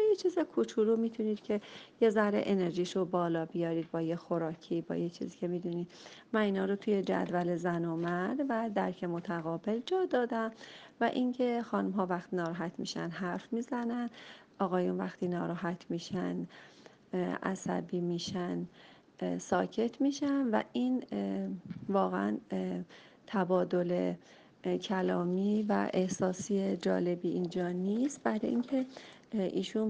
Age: 40-59